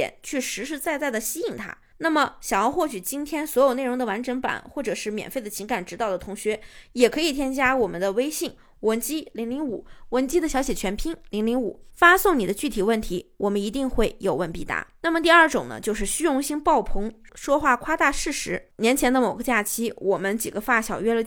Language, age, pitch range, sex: Chinese, 20-39, 220-295 Hz, female